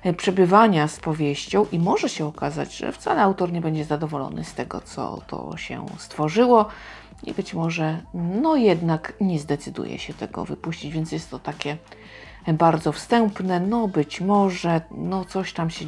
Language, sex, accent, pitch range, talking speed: Polish, female, native, 155-200 Hz, 160 wpm